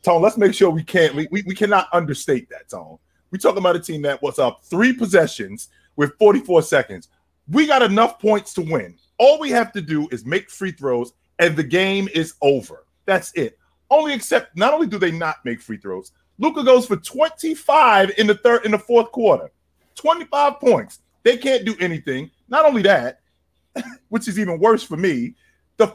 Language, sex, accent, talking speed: English, male, American, 195 wpm